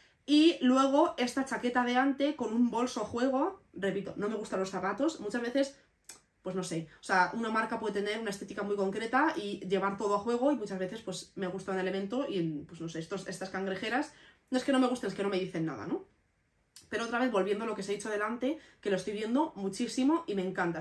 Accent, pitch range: Spanish, 195-250 Hz